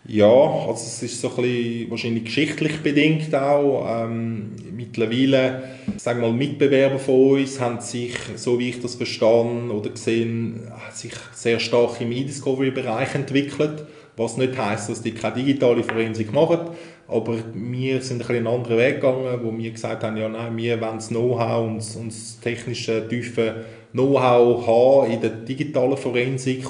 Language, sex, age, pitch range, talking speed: German, male, 20-39, 110-120 Hz, 165 wpm